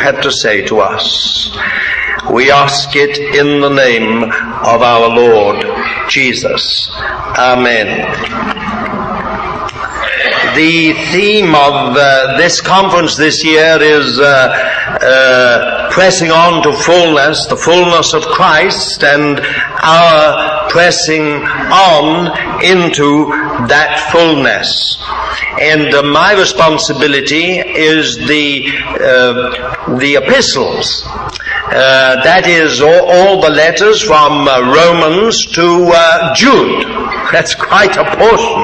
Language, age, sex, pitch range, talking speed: English, 60-79, male, 145-195 Hz, 105 wpm